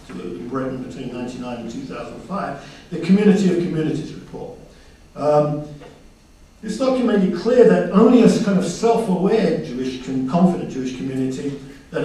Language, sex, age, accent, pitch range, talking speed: English, male, 50-69, British, 135-195 Hz, 130 wpm